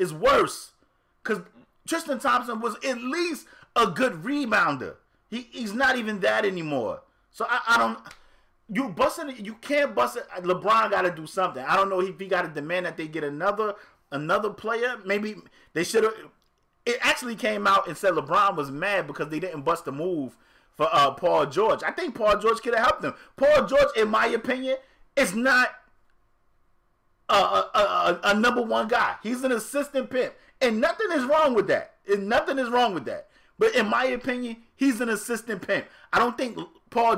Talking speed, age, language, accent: 190 wpm, 30-49, English, American